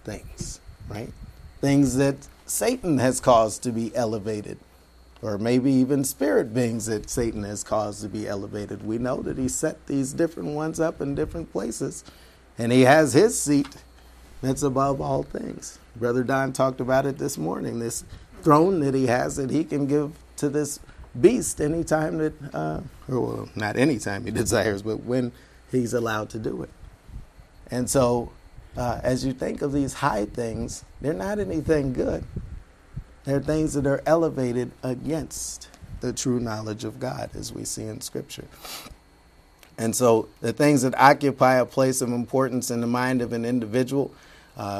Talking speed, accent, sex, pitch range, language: 165 wpm, American, male, 110-140 Hz, English